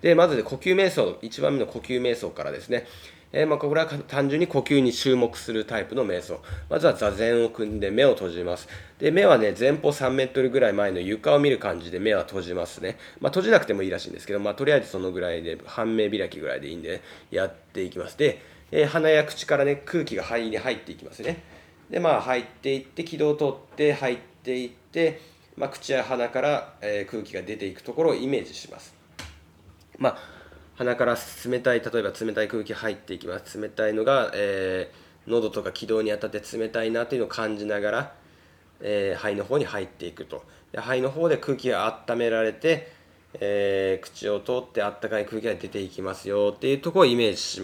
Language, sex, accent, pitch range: Japanese, male, native, 105-145 Hz